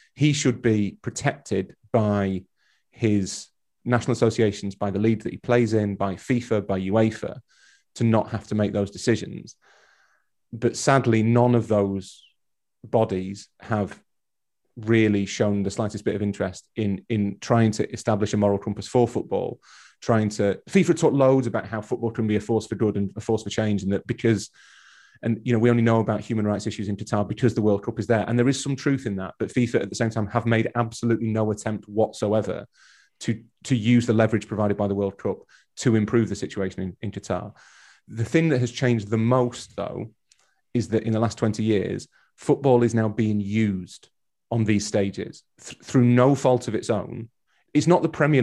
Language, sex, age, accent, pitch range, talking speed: English, male, 30-49, British, 105-120 Hz, 195 wpm